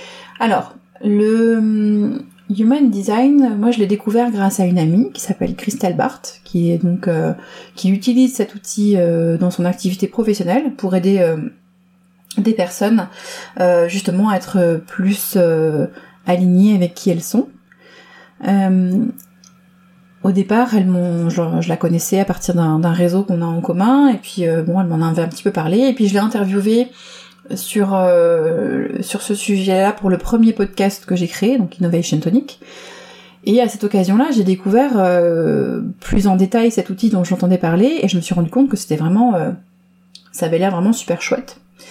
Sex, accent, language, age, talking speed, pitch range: female, French, French, 30-49, 180 wpm, 180-220 Hz